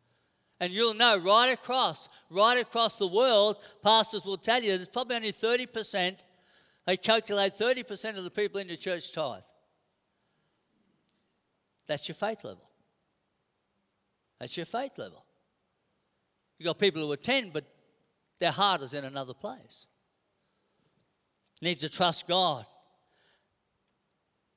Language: English